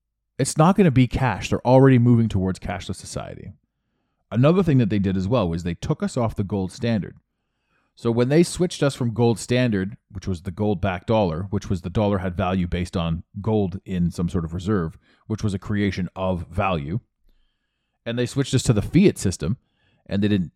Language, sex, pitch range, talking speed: English, male, 95-130 Hz, 210 wpm